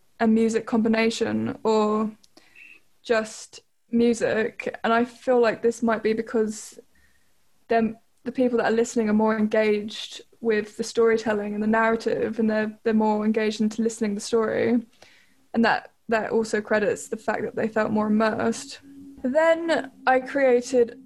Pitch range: 220-245 Hz